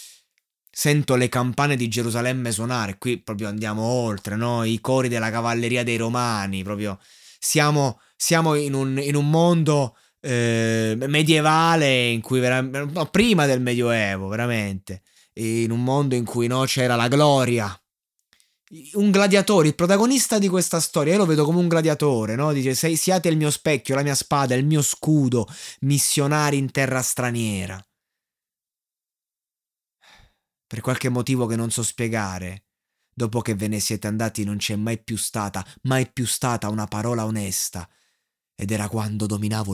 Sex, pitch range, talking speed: male, 110-145 Hz, 155 wpm